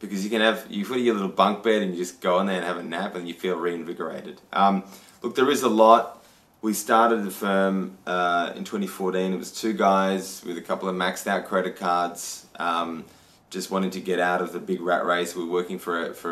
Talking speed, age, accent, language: 245 wpm, 20-39, Australian, English